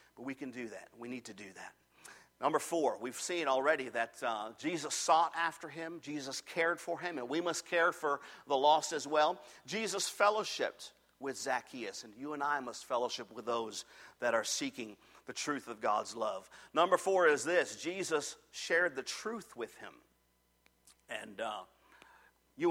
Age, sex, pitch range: 50-69, male, 135-170 Hz